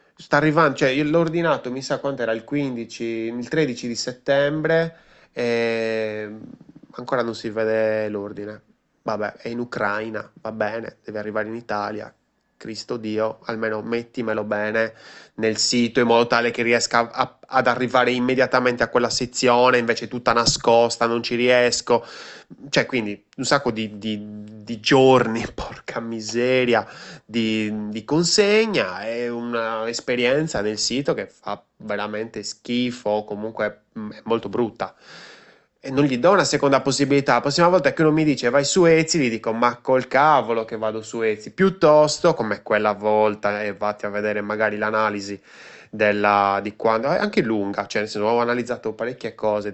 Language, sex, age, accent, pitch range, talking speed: Italian, male, 20-39, native, 110-130 Hz, 160 wpm